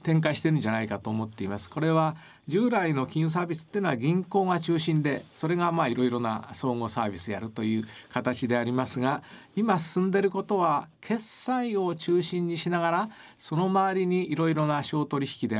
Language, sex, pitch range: Japanese, male, 125-175 Hz